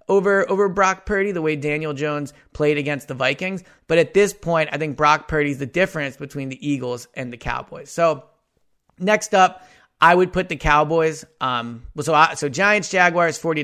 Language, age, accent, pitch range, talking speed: English, 30-49, American, 135-170 Hz, 190 wpm